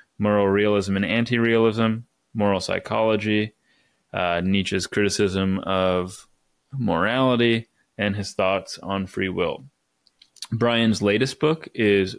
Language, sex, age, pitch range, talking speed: English, male, 20-39, 95-115 Hz, 105 wpm